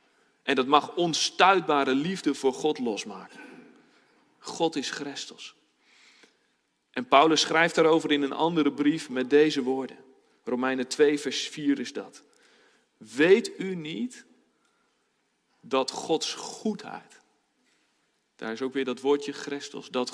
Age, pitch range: 40-59, 130-155 Hz